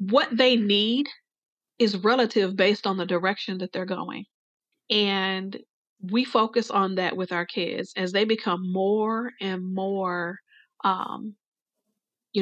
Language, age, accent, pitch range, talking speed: English, 40-59, American, 195-255 Hz, 135 wpm